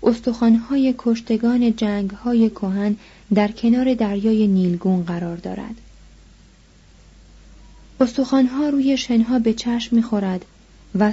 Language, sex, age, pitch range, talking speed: Persian, female, 30-49, 195-230 Hz, 90 wpm